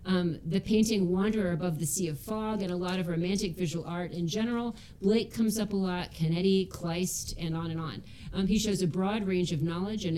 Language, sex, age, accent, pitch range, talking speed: English, female, 40-59, American, 155-185 Hz, 225 wpm